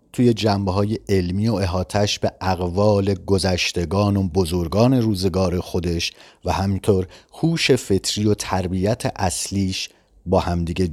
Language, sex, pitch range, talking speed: Persian, male, 90-110 Hz, 115 wpm